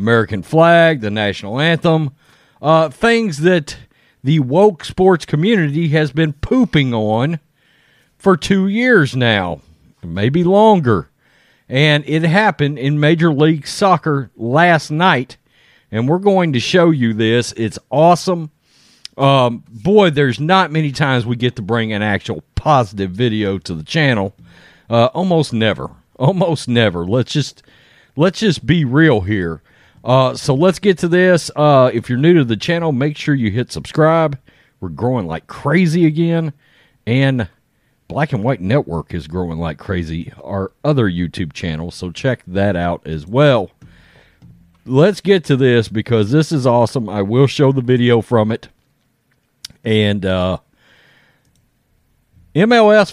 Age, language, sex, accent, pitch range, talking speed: 50-69, English, male, American, 110-160 Hz, 145 wpm